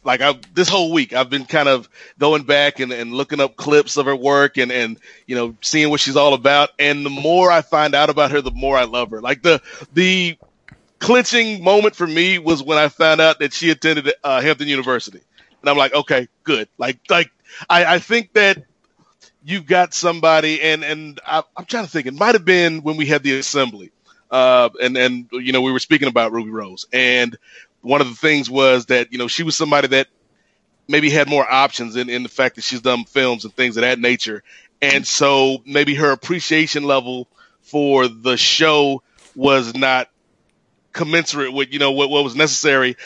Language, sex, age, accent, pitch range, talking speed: English, male, 30-49, American, 130-155 Hz, 210 wpm